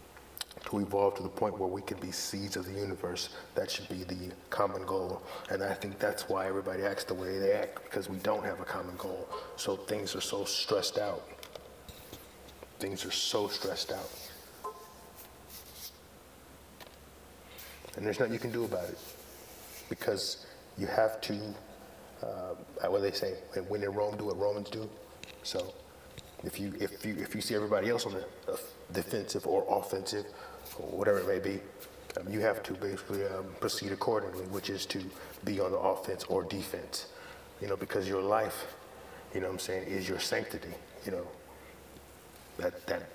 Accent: American